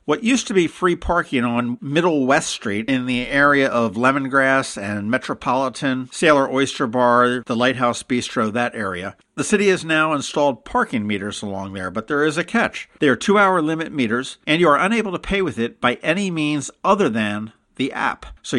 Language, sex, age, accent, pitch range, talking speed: English, male, 50-69, American, 115-155 Hz, 195 wpm